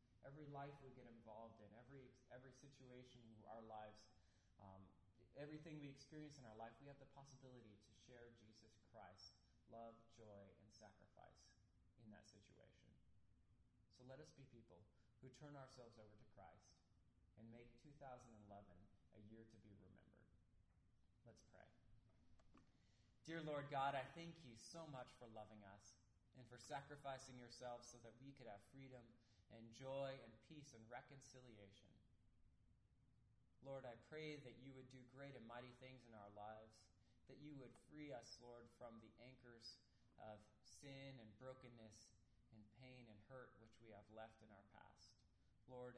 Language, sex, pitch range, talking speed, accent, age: English, male, 105-130 Hz, 160 wpm, American, 20-39